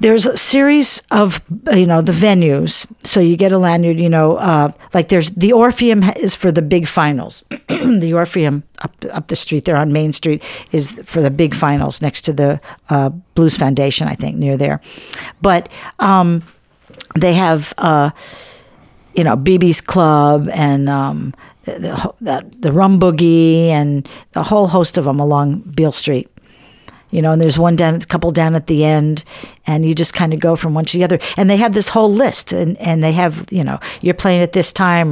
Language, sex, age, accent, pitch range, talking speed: English, female, 50-69, American, 155-190 Hz, 195 wpm